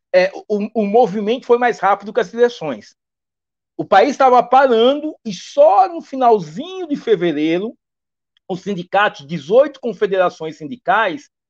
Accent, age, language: Brazilian, 60-79, Portuguese